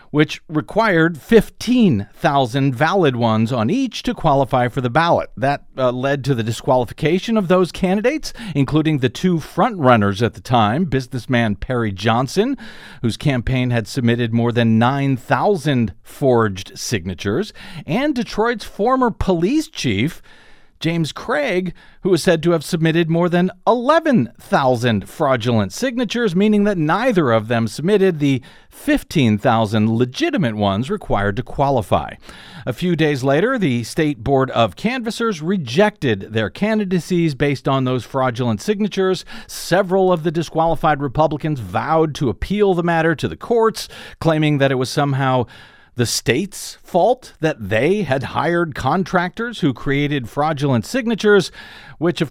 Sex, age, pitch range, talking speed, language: male, 50-69, 125-185 Hz, 140 wpm, English